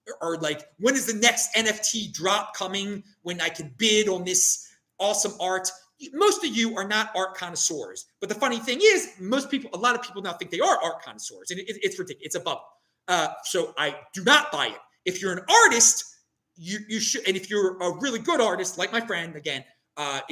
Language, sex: English, male